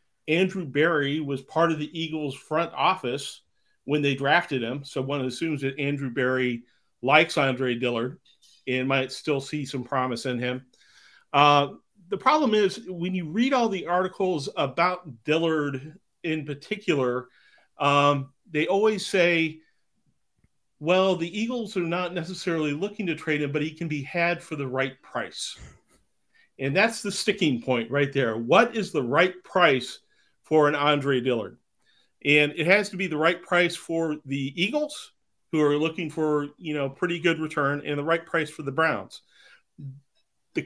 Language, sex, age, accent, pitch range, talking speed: English, male, 40-59, American, 135-175 Hz, 165 wpm